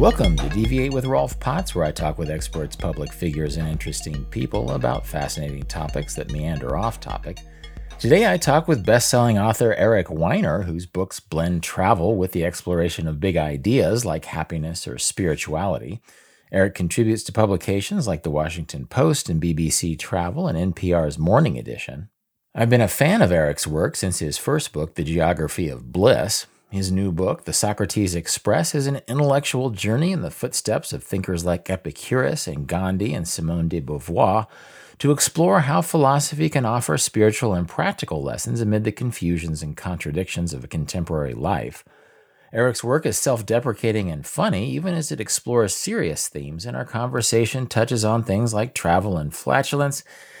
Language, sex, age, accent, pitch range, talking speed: English, male, 40-59, American, 80-120 Hz, 165 wpm